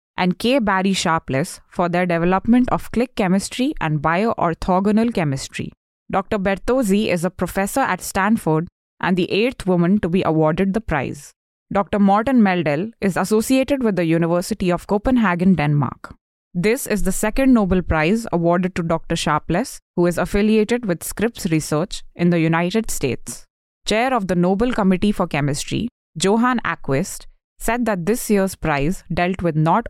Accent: Indian